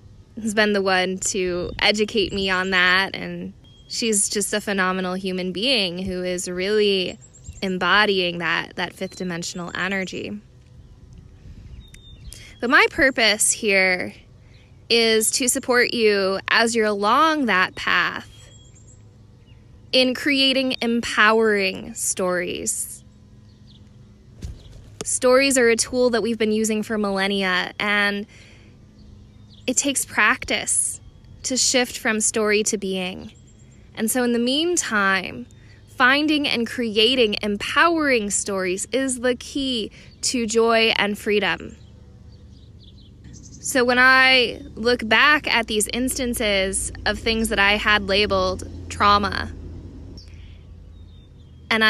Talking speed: 110 wpm